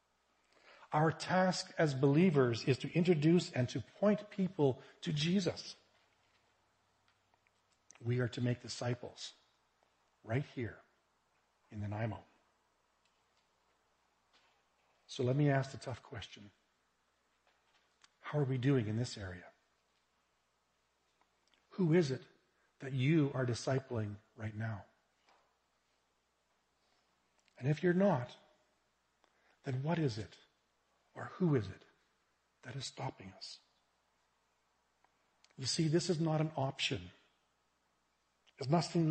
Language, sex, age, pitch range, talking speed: English, male, 50-69, 105-150 Hz, 110 wpm